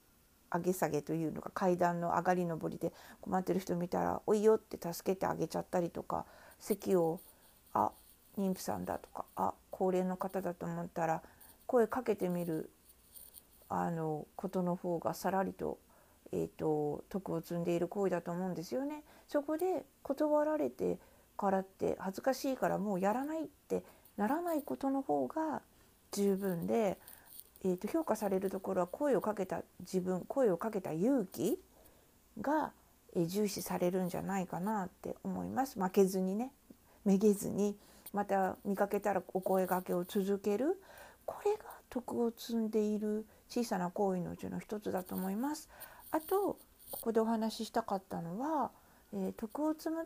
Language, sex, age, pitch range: Japanese, female, 50-69, 180-240 Hz